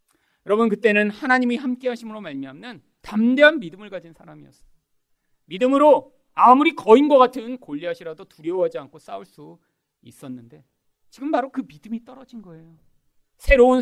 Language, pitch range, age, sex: Korean, 150-245 Hz, 40-59, male